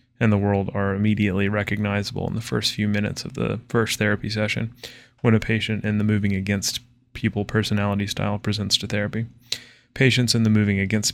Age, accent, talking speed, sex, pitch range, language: 20-39, American, 185 wpm, male, 105-120 Hz, English